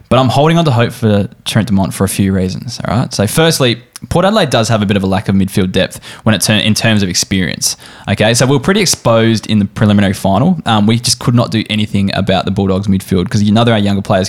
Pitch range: 100-120 Hz